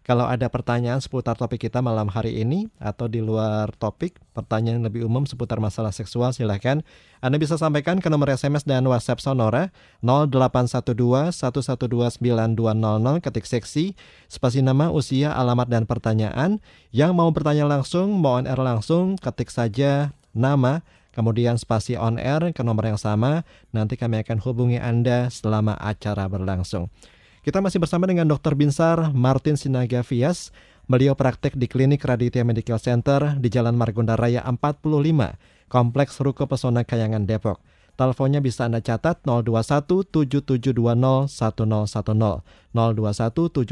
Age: 20-39